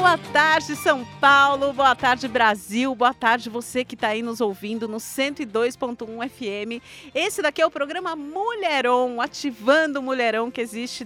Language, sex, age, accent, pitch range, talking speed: Portuguese, female, 50-69, Brazilian, 230-300 Hz, 155 wpm